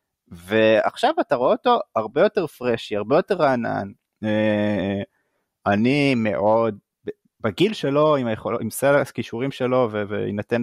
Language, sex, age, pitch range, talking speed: English, male, 30-49, 105-135 Hz, 115 wpm